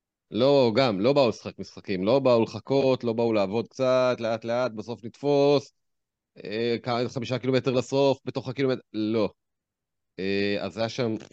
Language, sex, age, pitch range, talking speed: Hebrew, male, 30-49, 105-135 Hz, 150 wpm